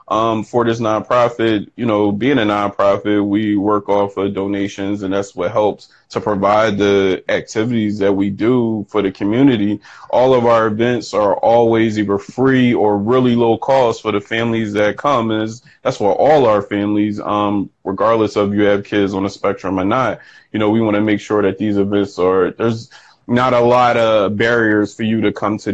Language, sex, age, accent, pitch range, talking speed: English, male, 20-39, American, 105-120 Hz, 200 wpm